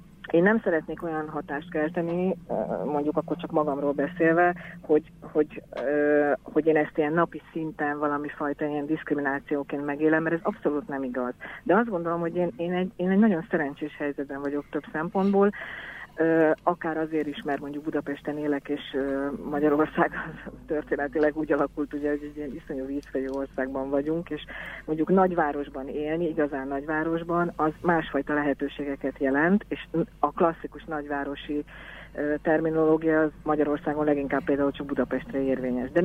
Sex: female